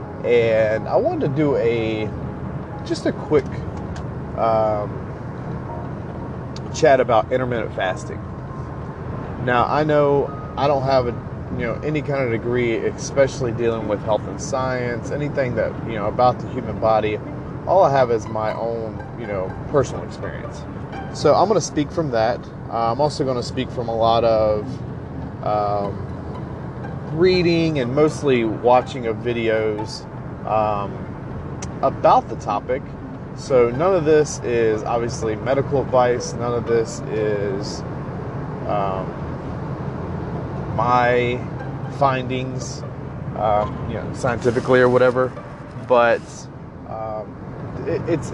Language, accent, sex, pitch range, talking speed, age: English, American, male, 110-140 Hz, 130 wpm, 30-49